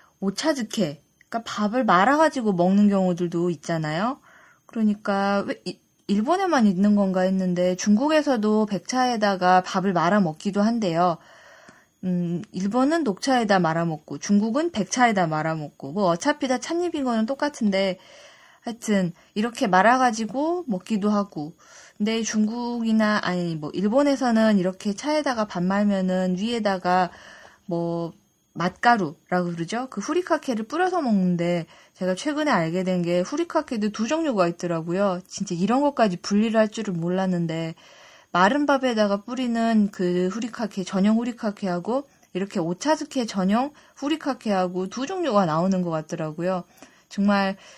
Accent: native